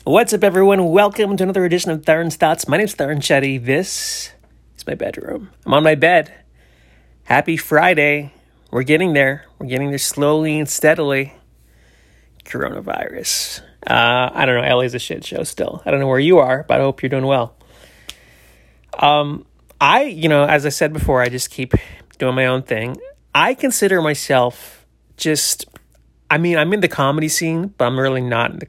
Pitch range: 130-165 Hz